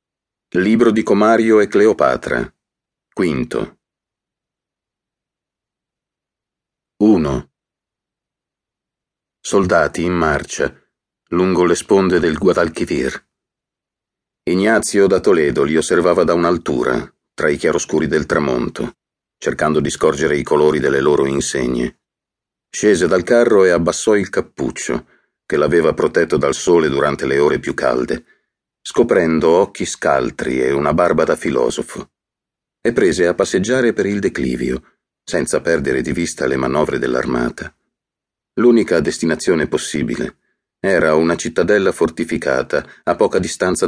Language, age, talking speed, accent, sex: Italian, 50-69, 115 wpm, native, male